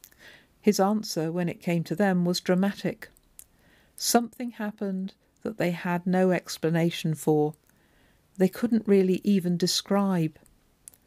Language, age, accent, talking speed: English, 50-69, British, 120 wpm